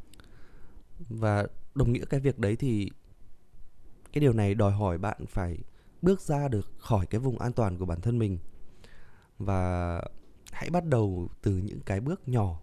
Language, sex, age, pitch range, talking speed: Vietnamese, male, 20-39, 95-130 Hz, 165 wpm